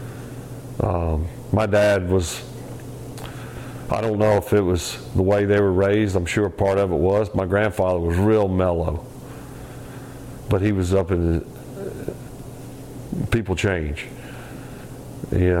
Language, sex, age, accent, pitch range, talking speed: English, male, 50-69, American, 95-115 Hz, 130 wpm